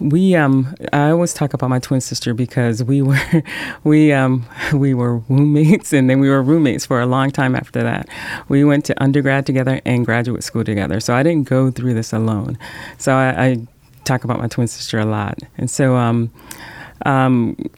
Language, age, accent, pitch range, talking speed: English, 30-49, American, 120-145 Hz, 195 wpm